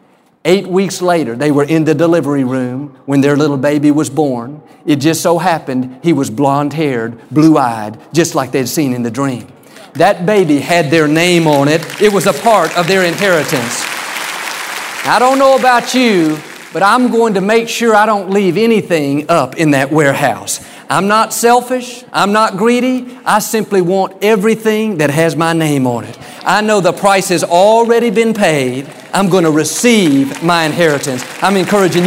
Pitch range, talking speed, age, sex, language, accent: 150-200 Hz, 180 wpm, 50-69, male, English, American